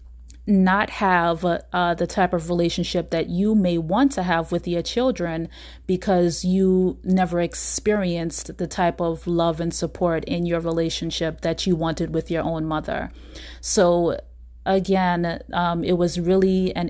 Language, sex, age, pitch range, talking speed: English, female, 30-49, 170-190 Hz, 155 wpm